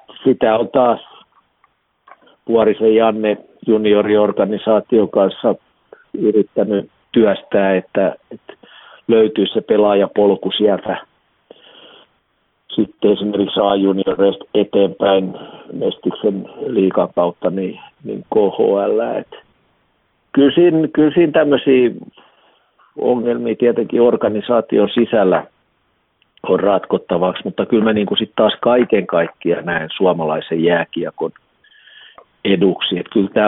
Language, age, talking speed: Finnish, 50-69, 85 wpm